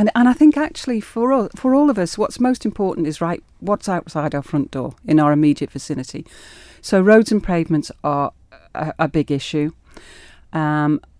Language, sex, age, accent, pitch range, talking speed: English, female, 40-59, British, 145-170 Hz, 190 wpm